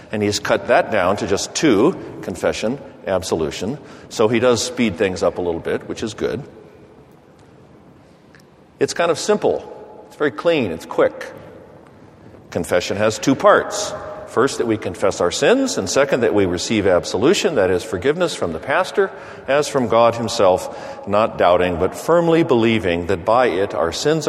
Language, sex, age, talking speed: English, male, 50-69, 165 wpm